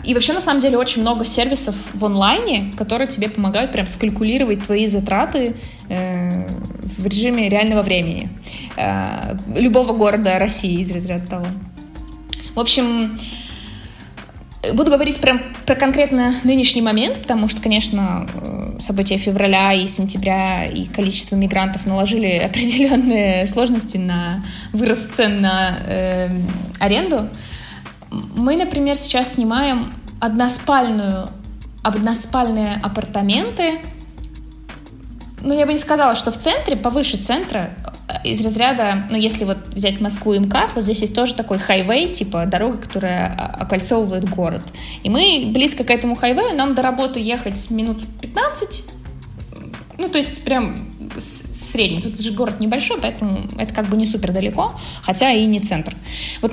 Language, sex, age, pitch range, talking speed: Russian, female, 20-39, 195-250 Hz, 135 wpm